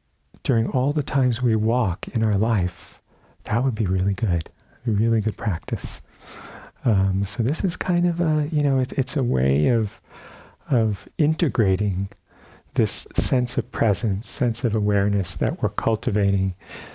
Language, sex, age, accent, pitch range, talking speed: English, male, 40-59, American, 100-120 Hz, 155 wpm